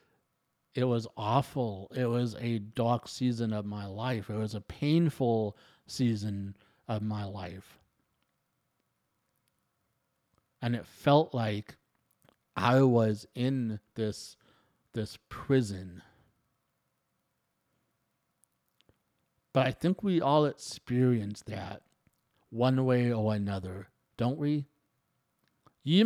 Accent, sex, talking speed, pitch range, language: American, male, 100 wpm, 110-140 Hz, English